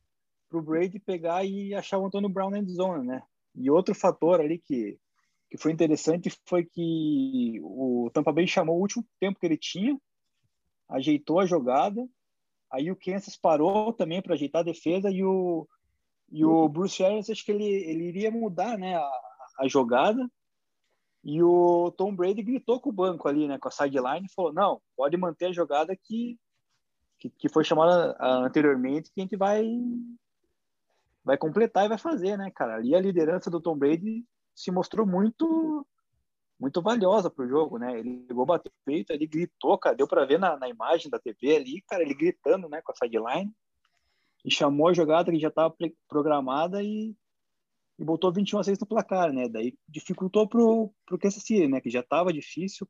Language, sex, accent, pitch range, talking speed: Portuguese, male, Brazilian, 155-215 Hz, 185 wpm